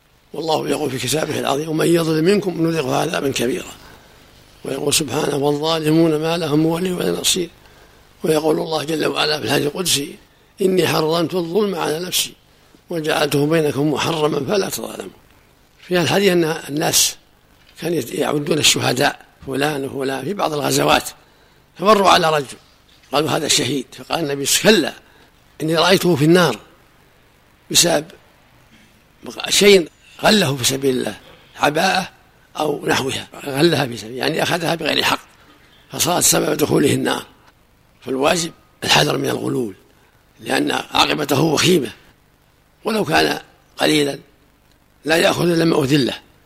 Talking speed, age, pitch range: 125 wpm, 60-79, 145-170 Hz